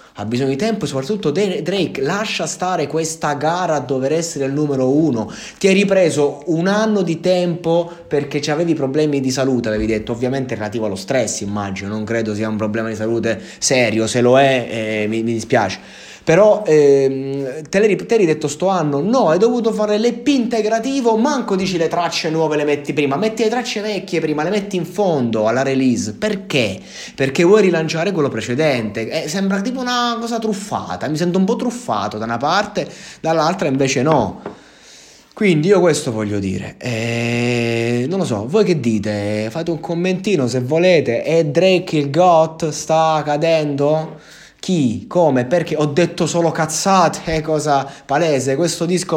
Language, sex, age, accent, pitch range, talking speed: Italian, male, 20-39, native, 125-185 Hz, 170 wpm